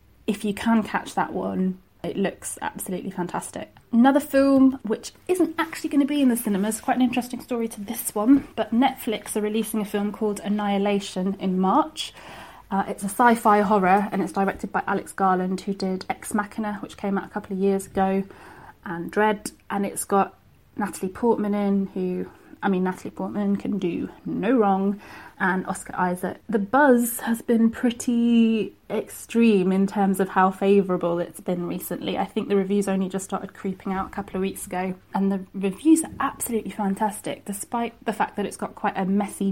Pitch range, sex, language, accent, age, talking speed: 190-225 Hz, female, English, British, 30-49, 190 wpm